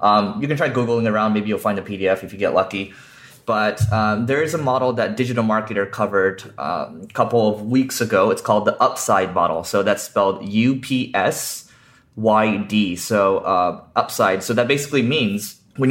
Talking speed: 180 wpm